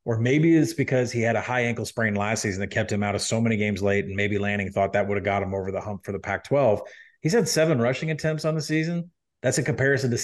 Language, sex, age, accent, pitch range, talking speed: English, male, 30-49, American, 110-145 Hz, 285 wpm